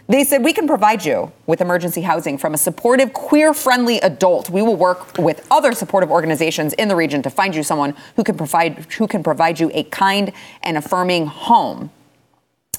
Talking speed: 190 wpm